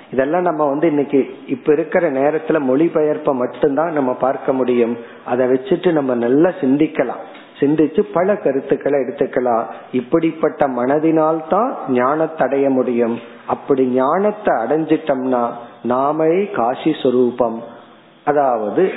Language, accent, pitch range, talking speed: Tamil, native, 125-155 Hz, 70 wpm